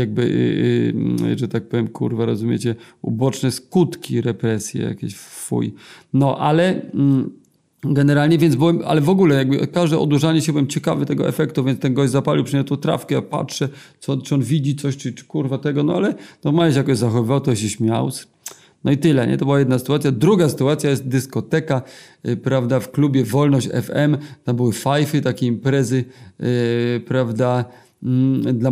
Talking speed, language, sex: 175 wpm, Polish, male